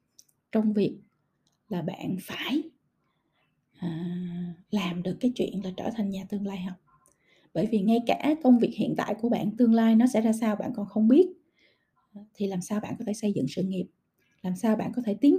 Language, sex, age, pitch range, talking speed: Vietnamese, female, 20-39, 195-245 Hz, 205 wpm